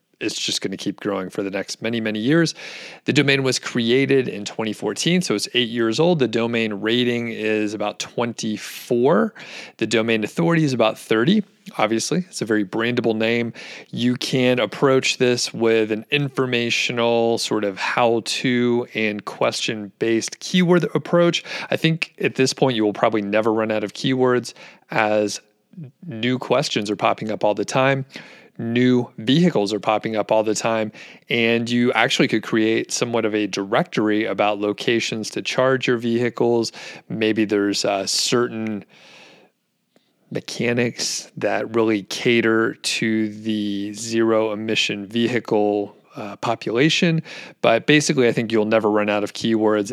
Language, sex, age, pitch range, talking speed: English, male, 30-49, 110-130 Hz, 150 wpm